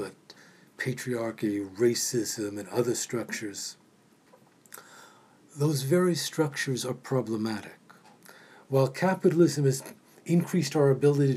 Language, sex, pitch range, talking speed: English, male, 130-160 Hz, 85 wpm